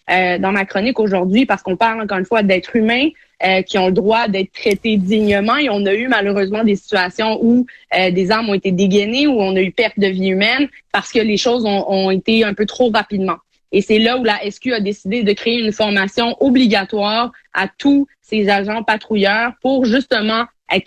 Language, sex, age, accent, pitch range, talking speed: French, female, 20-39, Canadian, 200-240 Hz, 215 wpm